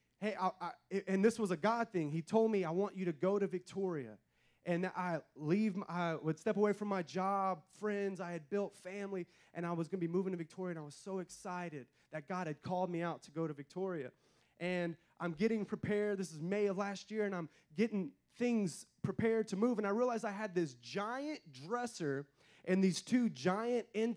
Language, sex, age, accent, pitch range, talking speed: English, male, 20-39, American, 180-215 Hz, 220 wpm